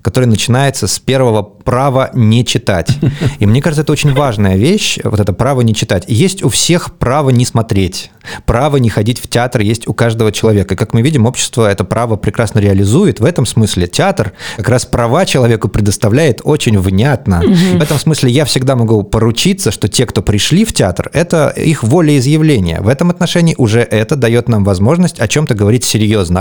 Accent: native